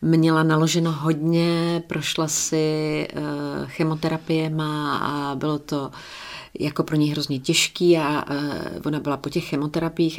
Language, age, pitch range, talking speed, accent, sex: Czech, 40-59, 155-195 Hz, 120 wpm, native, female